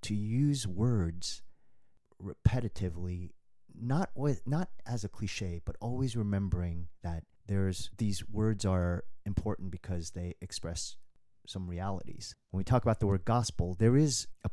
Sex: male